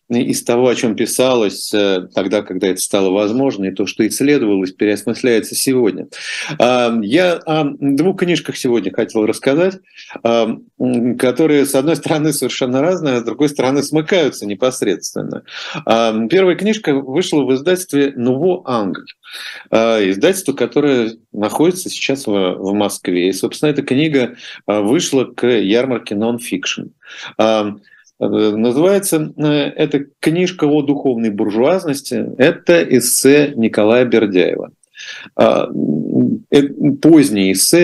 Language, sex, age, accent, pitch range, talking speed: Russian, male, 40-59, native, 105-145 Hz, 110 wpm